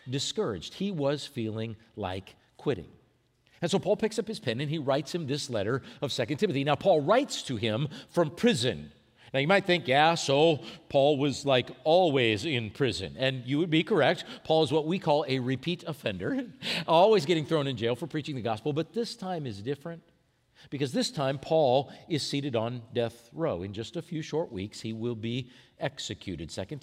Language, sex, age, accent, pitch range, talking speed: English, male, 50-69, American, 120-170 Hz, 195 wpm